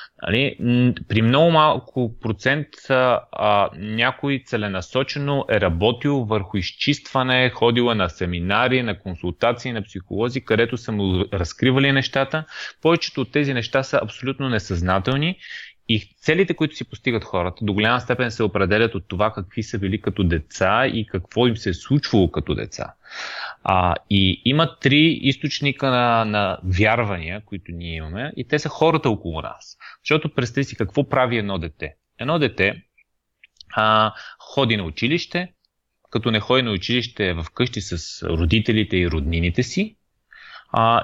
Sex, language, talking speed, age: male, Bulgarian, 145 wpm, 30-49